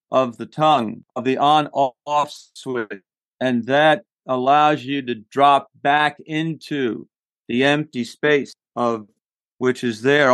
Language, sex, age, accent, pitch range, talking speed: English, male, 50-69, American, 120-155 Hz, 130 wpm